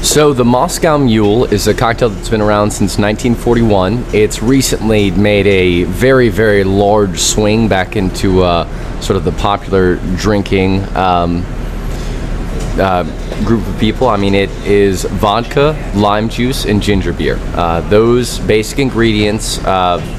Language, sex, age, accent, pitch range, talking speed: English, male, 20-39, American, 95-115 Hz, 145 wpm